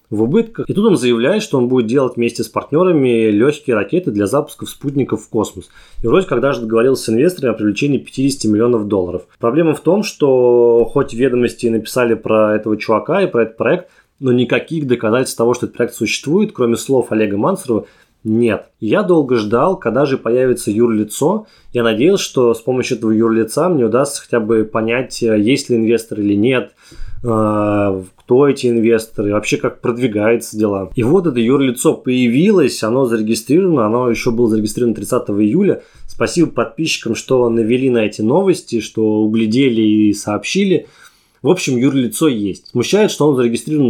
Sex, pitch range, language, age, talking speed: male, 110-135 Hz, Russian, 20-39, 165 wpm